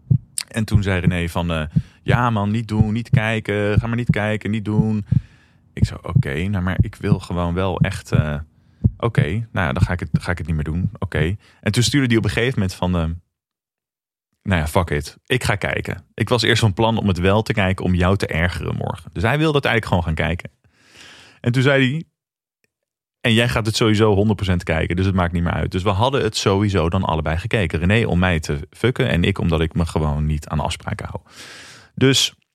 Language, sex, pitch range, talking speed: Dutch, male, 80-110 Hz, 235 wpm